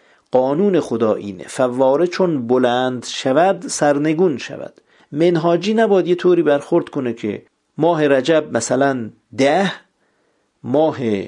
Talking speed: 110 wpm